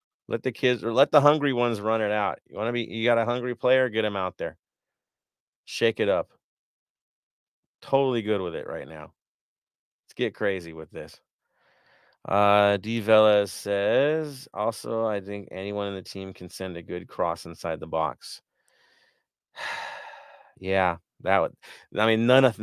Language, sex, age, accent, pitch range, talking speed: English, male, 30-49, American, 90-115 Hz, 170 wpm